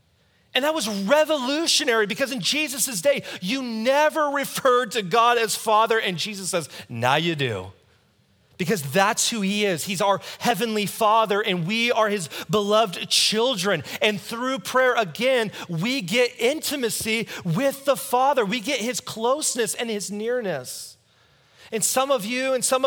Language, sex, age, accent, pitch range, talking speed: English, male, 30-49, American, 180-245 Hz, 155 wpm